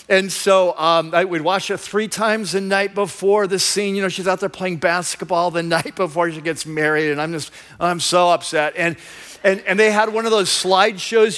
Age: 50-69